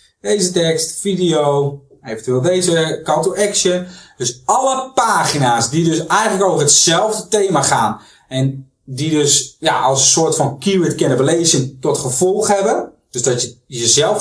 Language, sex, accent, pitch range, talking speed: Dutch, male, Dutch, 135-190 Hz, 150 wpm